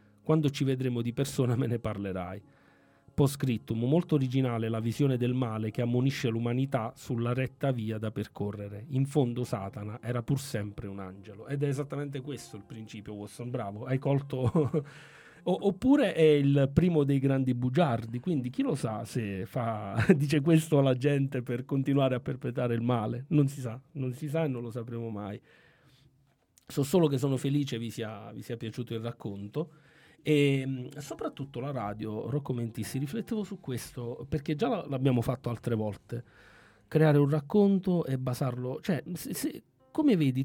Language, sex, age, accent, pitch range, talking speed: Italian, male, 40-59, native, 115-150 Hz, 170 wpm